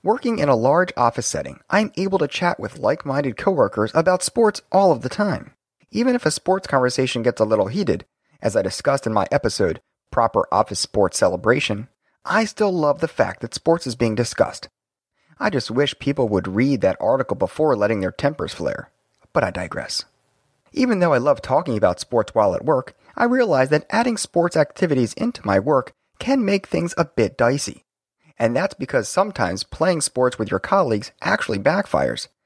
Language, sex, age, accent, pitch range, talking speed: English, male, 30-49, American, 130-200 Hz, 185 wpm